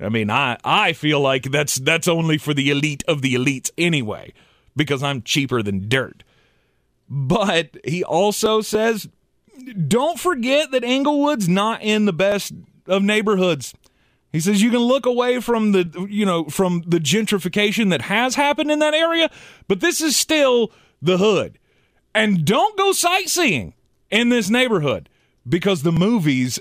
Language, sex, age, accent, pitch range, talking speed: English, male, 30-49, American, 140-220 Hz, 160 wpm